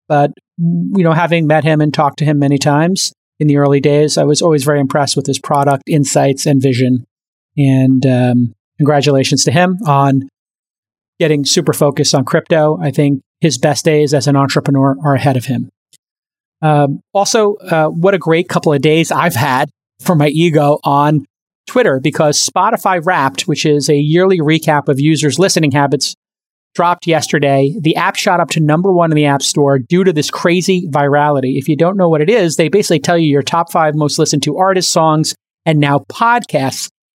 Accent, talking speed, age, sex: American, 190 wpm, 30-49, male